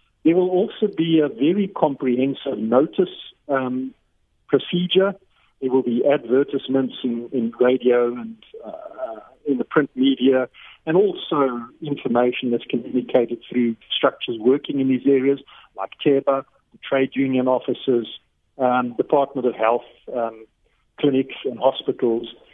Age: 50-69